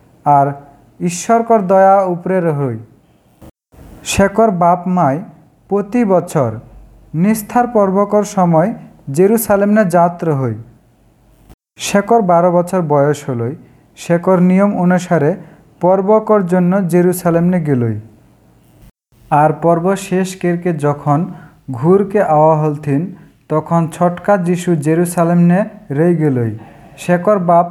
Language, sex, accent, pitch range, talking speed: English, male, Indian, 140-190 Hz, 80 wpm